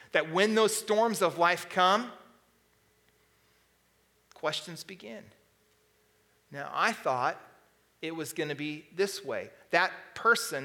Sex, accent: male, American